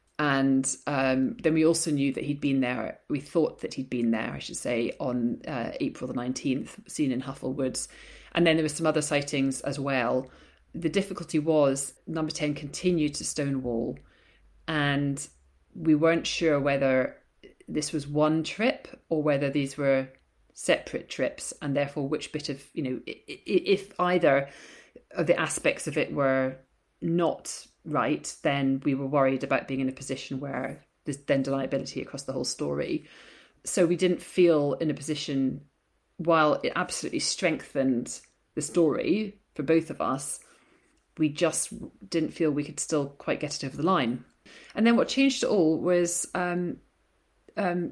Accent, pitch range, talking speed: British, 135-165 Hz, 165 wpm